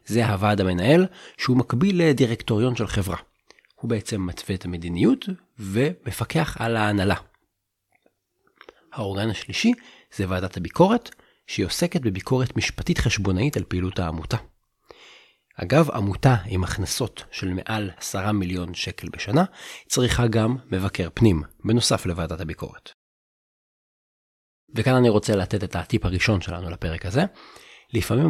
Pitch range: 95-125 Hz